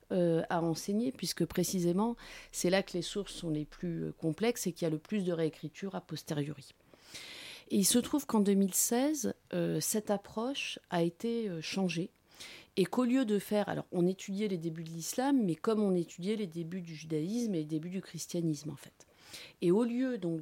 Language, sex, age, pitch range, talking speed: French, female, 30-49, 165-230 Hz, 200 wpm